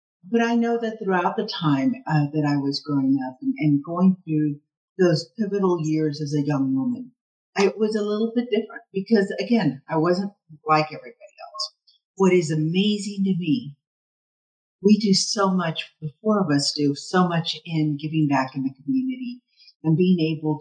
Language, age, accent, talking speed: English, 50-69, American, 180 wpm